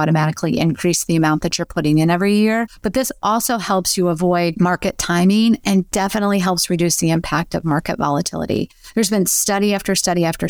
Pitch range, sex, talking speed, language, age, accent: 175-210 Hz, female, 190 wpm, English, 30-49, American